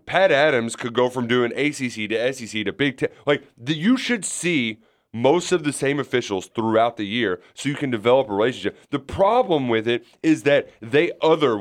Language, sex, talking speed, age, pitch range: English, male, 200 wpm, 30-49, 110-155 Hz